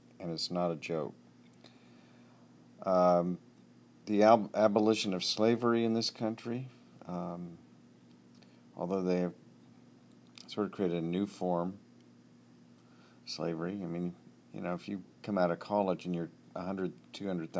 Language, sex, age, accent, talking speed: English, male, 50-69, American, 135 wpm